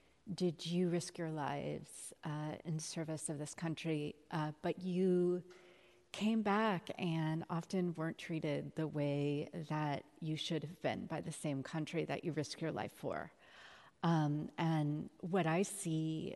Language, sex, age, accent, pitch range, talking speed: English, female, 40-59, American, 155-180 Hz, 155 wpm